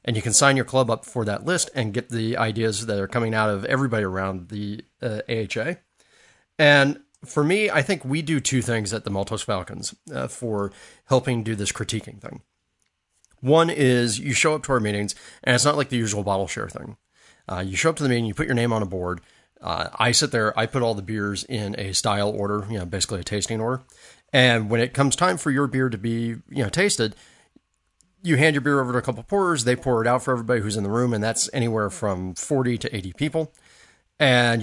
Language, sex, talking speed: English, male, 235 wpm